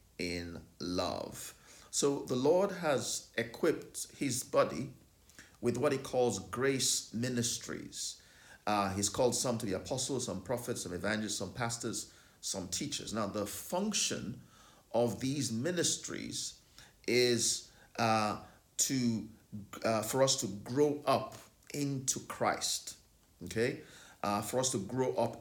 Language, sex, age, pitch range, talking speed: English, male, 50-69, 100-125 Hz, 130 wpm